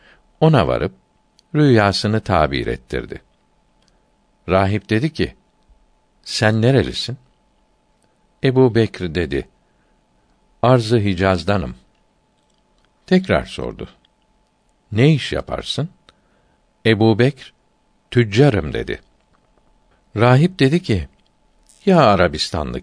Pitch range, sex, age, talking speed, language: 95-125 Hz, male, 60-79, 75 wpm, Turkish